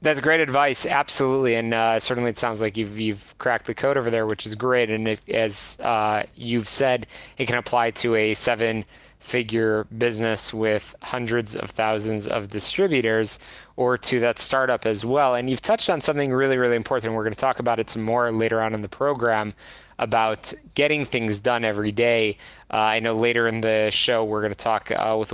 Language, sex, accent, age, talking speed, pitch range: English, male, American, 20-39, 205 wpm, 110-140 Hz